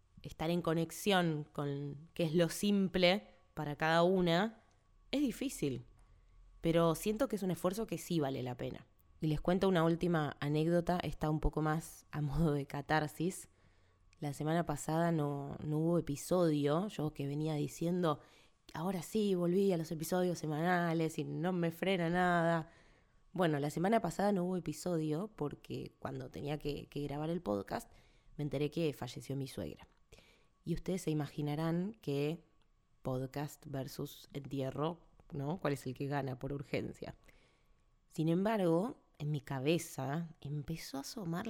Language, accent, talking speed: Spanish, Argentinian, 155 wpm